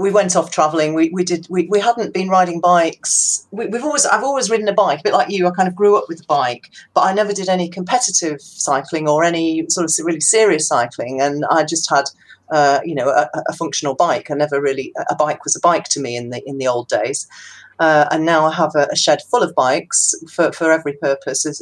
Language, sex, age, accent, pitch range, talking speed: English, female, 40-59, British, 150-190 Hz, 250 wpm